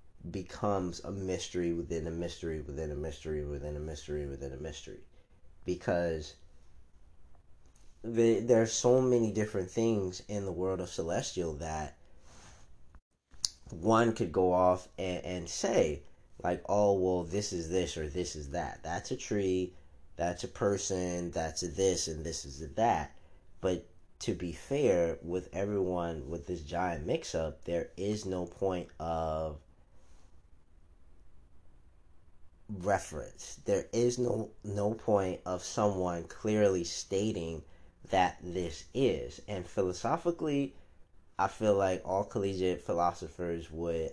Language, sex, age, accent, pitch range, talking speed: English, male, 30-49, American, 80-95 Hz, 130 wpm